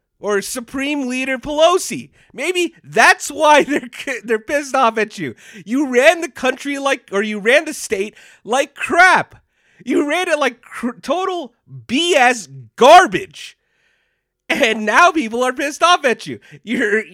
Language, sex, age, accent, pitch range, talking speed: English, male, 30-49, American, 235-315 Hz, 145 wpm